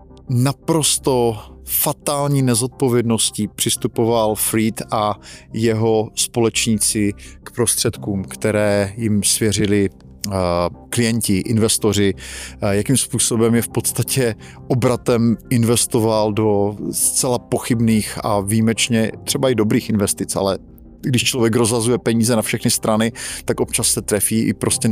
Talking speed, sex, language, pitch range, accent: 110 wpm, male, Czech, 100-120 Hz, native